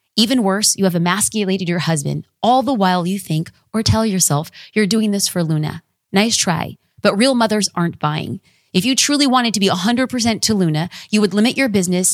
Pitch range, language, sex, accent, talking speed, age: 160-205 Hz, English, female, American, 205 wpm, 30-49